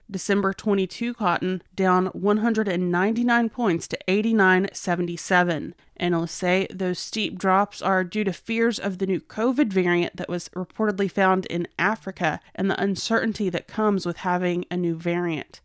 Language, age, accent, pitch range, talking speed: English, 30-49, American, 185-230 Hz, 145 wpm